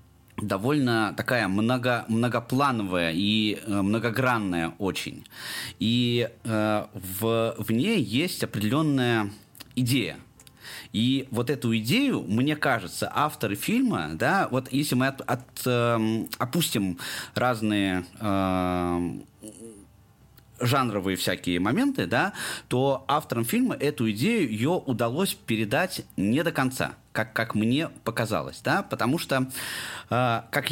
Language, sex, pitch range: Russian, male, 110-135 Hz